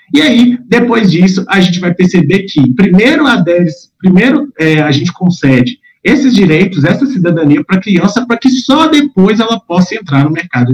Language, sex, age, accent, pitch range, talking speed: Portuguese, male, 40-59, Brazilian, 170-235 Hz, 185 wpm